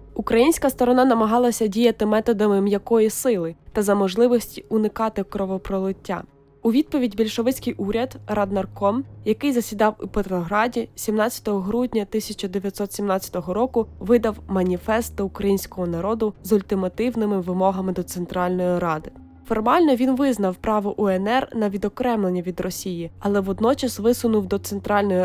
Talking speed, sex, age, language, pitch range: 120 wpm, female, 20-39, Ukrainian, 190-230 Hz